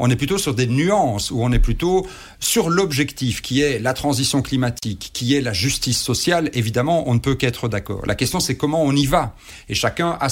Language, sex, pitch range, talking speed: French, male, 115-155 Hz, 220 wpm